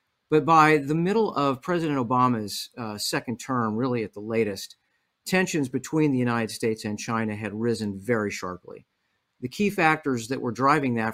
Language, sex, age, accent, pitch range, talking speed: English, male, 50-69, American, 110-140 Hz, 170 wpm